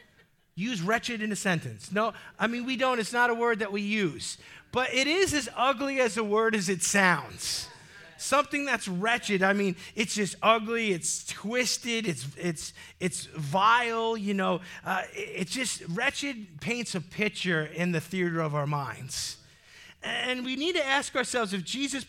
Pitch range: 180-250 Hz